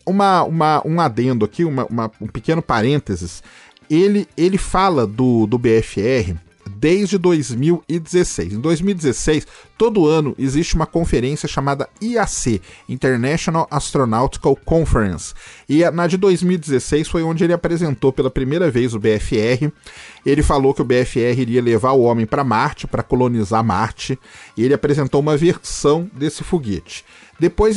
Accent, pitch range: Brazilian, 120-170 Hz